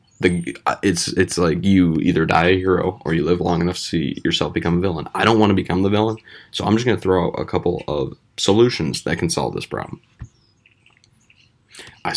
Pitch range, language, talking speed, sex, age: 90-110 Hz, English, 215 wpm, male, 20-39